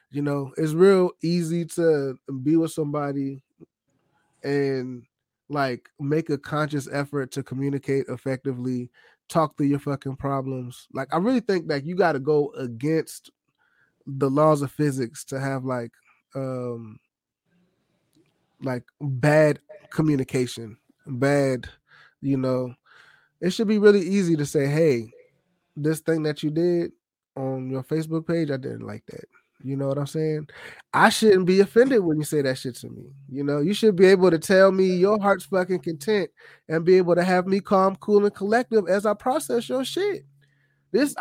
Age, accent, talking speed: 20-39, American, 165 wpm